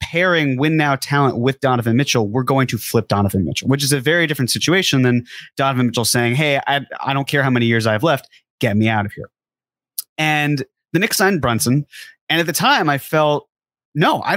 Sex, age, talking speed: male, 30-49, 215 wpm